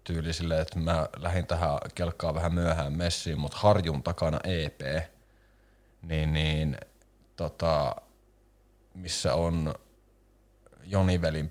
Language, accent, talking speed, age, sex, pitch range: Finnish, native, 100 wpm, 30-49, male, 75-95 Hz